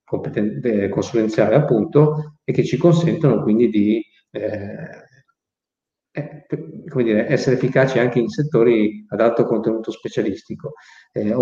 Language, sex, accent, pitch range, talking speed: Italian, male, native, 105-125 Hz, 110 wpm